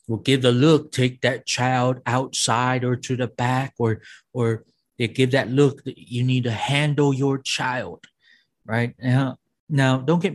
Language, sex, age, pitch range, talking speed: English, male, 30-49, 120-140 Hz, 175 wpm